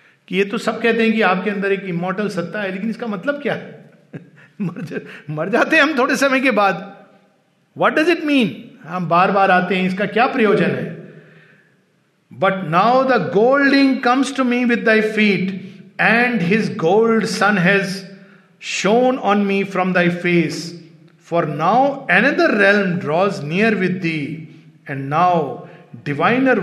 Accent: native